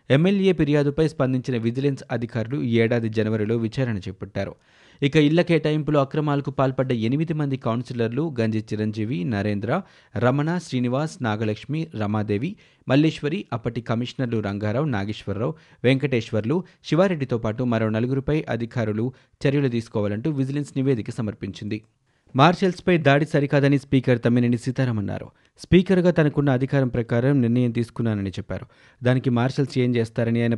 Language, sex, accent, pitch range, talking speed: Telugu, male, native, 115-150 Hz, 115 wpm